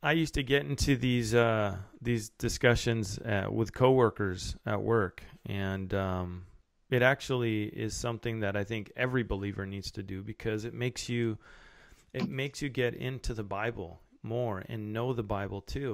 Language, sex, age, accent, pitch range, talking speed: English, male, 30-49, American, 105-130 Hz, 170 wpm